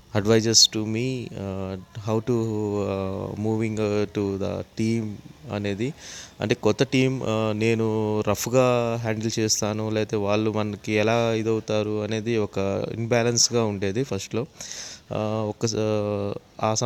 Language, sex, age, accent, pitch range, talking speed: English, male, 20-39, Indian, 110-125 Hz, 95 wpm